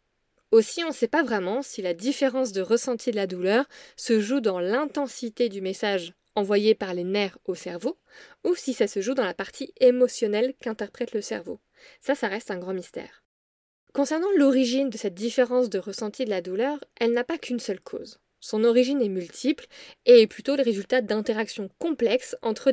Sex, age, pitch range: female, 20-39, 205-270 Hz